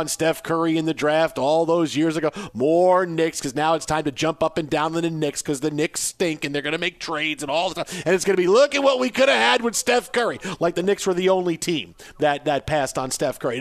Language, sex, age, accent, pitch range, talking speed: English, male, 40-59, American, 145-185 Hz, 285 wpm